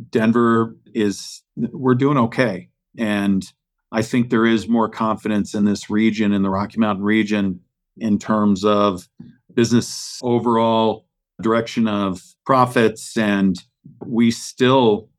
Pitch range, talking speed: 100-120 Hz, 125 wpm